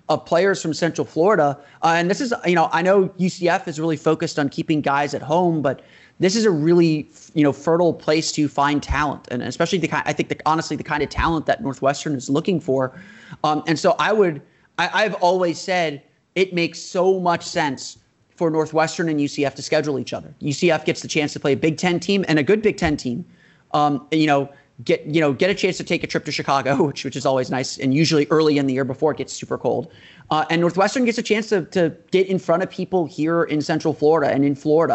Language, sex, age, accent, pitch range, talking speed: English, male, 30-49, American, 145-175 Hz, 240 wpm